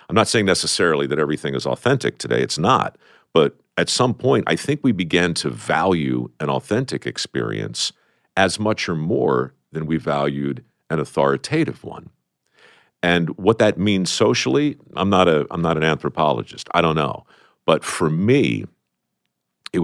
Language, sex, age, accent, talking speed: English, male, 50-69, American, 160 wpm